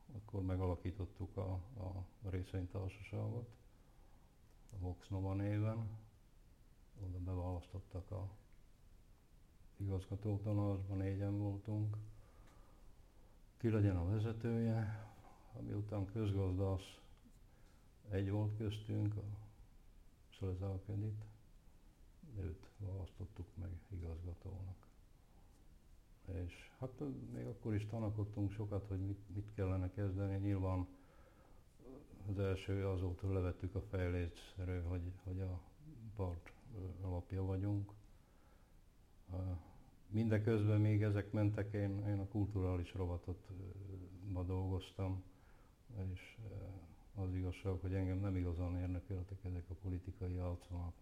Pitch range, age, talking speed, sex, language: 90-105 Hz, 60-79, 90 wpm, male, Hungarian